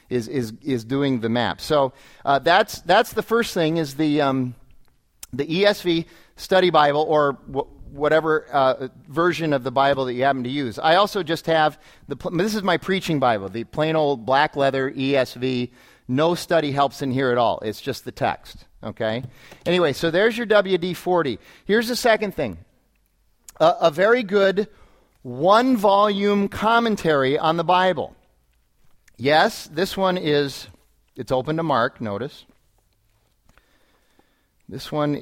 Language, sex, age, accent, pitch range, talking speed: English, male, 40-59, American, 135-180 Hz, 155 wpm